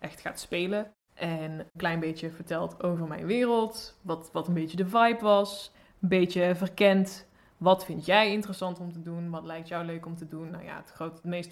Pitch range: 165-190 Hz